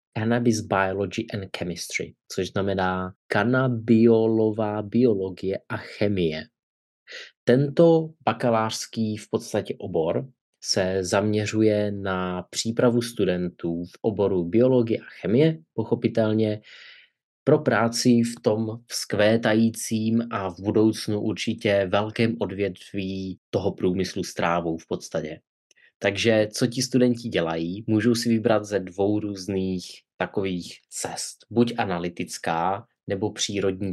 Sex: male